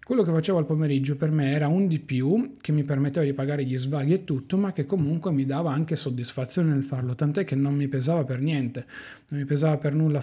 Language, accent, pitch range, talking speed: Italian, native, 140-190 Hz, 240 wpm